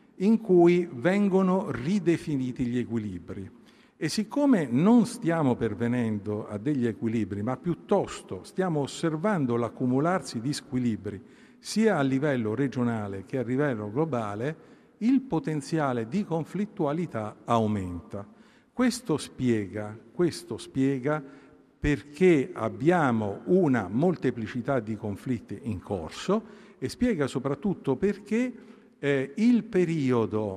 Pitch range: 120-190 Hz